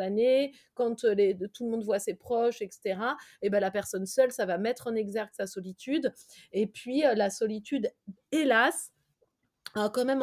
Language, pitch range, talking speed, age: French, 210-250 Hz, 175 wpm, 30-49